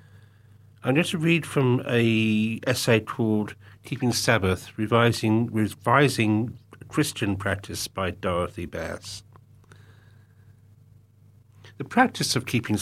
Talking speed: 100 wpm